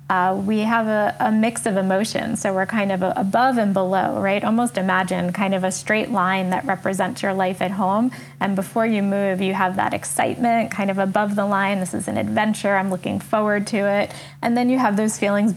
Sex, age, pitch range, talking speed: female, 20-39, 190-210 Hz, 225 wpm